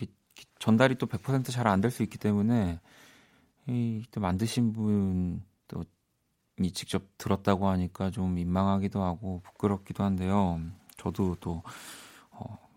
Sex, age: male, 40-59